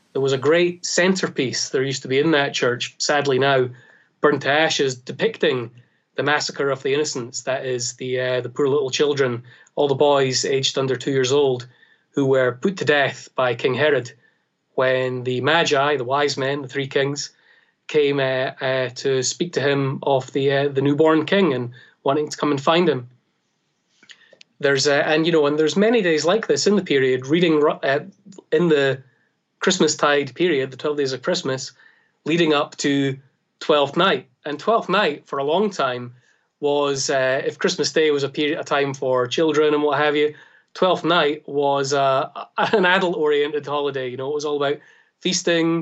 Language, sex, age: English, male, 30-49